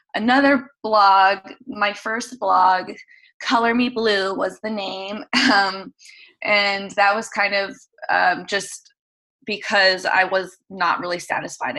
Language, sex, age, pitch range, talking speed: English, female, 20-39, 185-235 Hz, 125 wpm